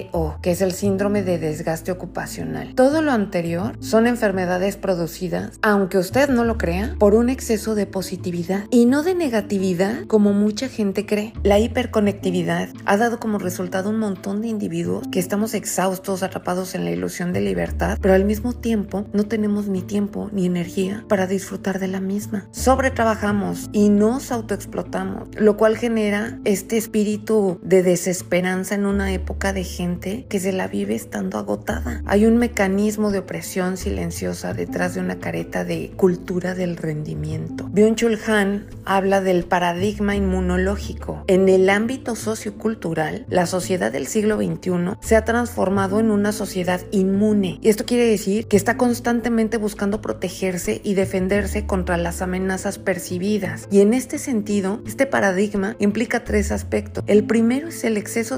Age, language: 40-59, Spanish